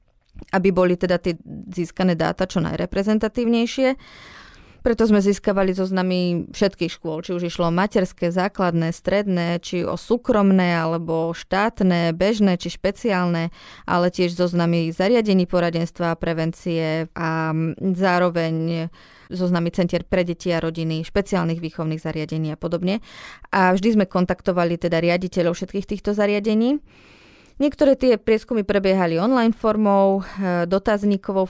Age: 20-39